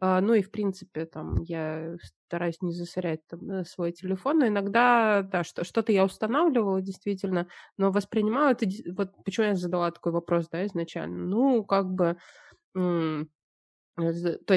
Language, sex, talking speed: Russian, female, 135 wpm